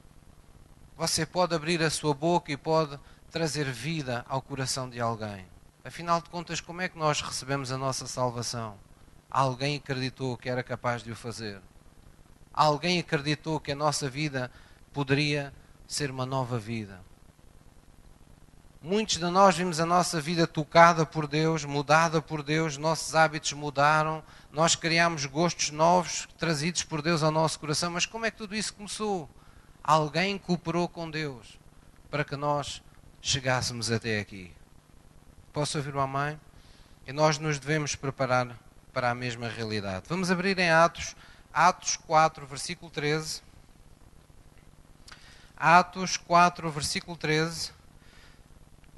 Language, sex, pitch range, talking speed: Portuguese, male, 120-165 Hz, 135 wpm